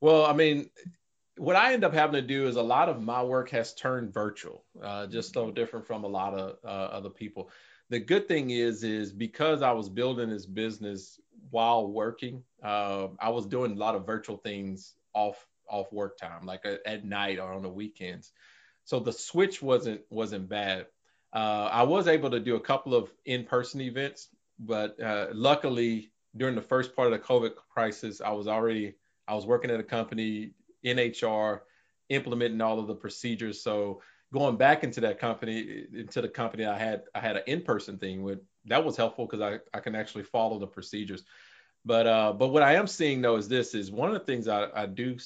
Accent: American